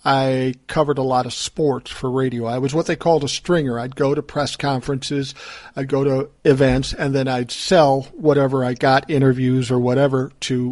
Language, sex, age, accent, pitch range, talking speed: English, male, 50-69, American, 130-160 Hz, 195 wpm